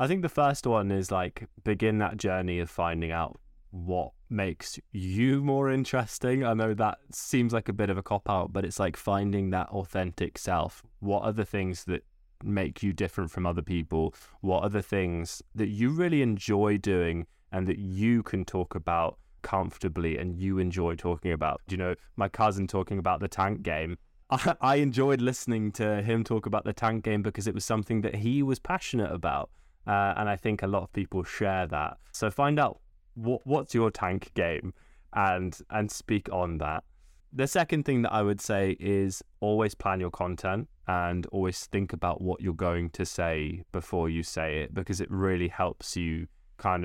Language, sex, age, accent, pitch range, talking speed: English, male, 20-39, British, 90-110 Hz, 190 wpm